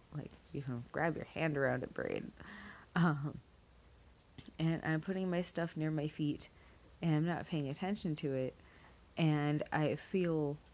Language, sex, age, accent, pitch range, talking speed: English, female, 30-49, American, 130-165 Hz, 150 wpm